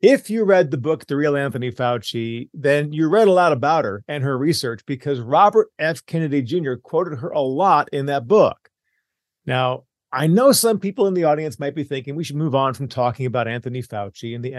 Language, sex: English, male